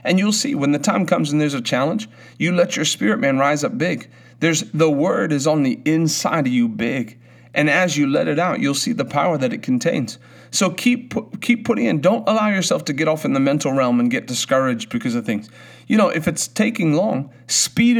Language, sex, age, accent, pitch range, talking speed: English, male, 40-59, American, 120-195 Hz, 235 wpm